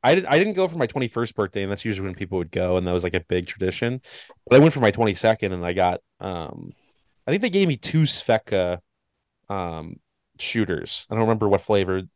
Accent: American